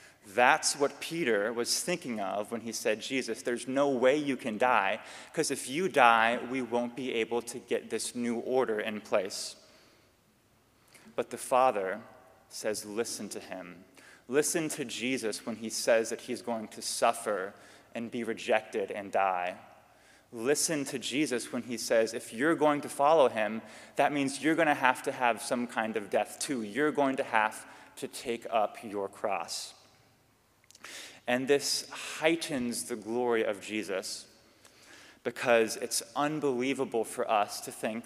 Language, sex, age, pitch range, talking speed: English, male, 20-39, 115-140 Hz, 160 wpm